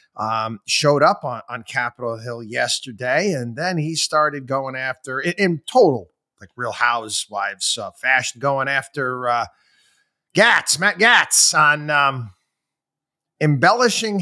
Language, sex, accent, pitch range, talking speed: English, male, American, 135-185 Hz, 130 wpm